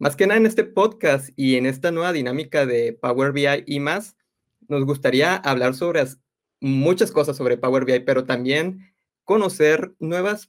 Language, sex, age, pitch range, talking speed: Spanish, male, 20-39, 130-155 Hz, 165 wpm